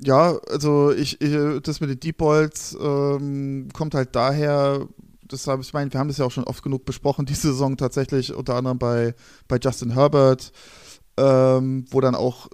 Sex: male